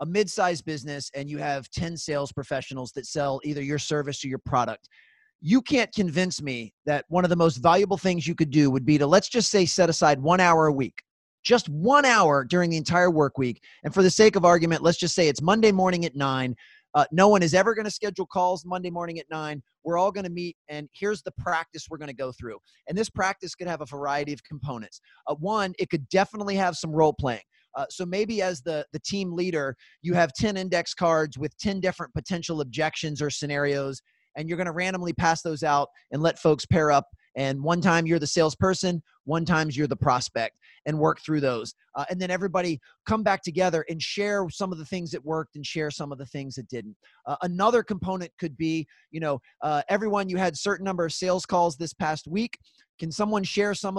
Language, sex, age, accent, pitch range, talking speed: English, male, 30-49, American, 150-185 Hz, 225 wpm